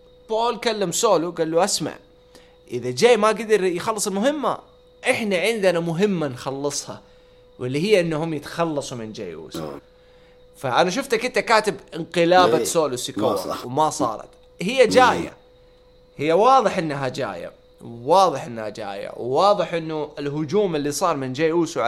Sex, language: male, English